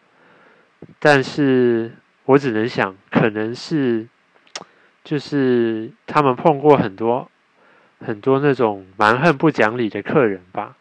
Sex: male